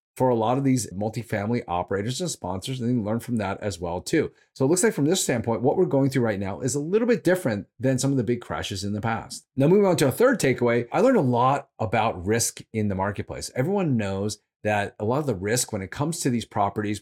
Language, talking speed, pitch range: English, 260 wpm, 105-140 Hz